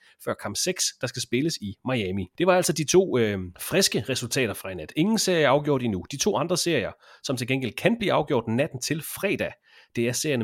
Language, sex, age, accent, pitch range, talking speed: Danish, male, 30-49, native, 115-160 Hz, 230 wpm